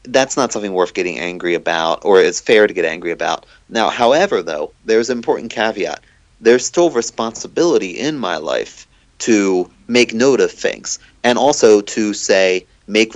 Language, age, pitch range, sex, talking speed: English, 30-49, 95-135 Hz, male, 170 wpm